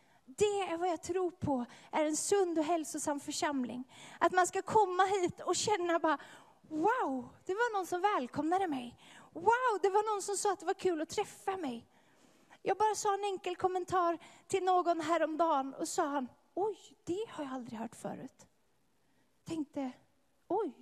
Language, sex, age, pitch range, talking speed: English, female, 30-49, 300-405 Hz, 180 wpm